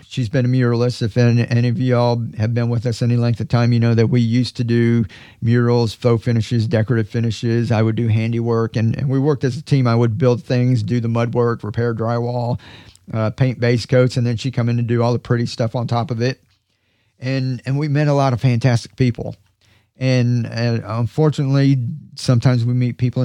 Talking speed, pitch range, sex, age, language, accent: 215 wpm, 115-130 Hz, male, 40-59, English, American